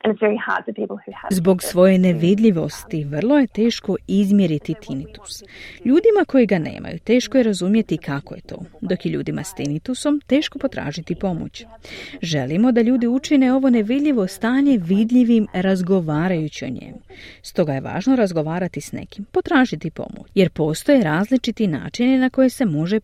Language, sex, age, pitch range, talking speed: Croatian, female, 40-59, 155-245 Hz, 135 wpm